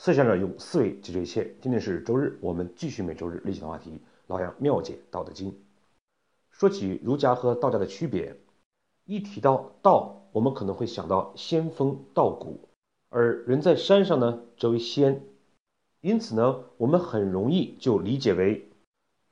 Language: Chinese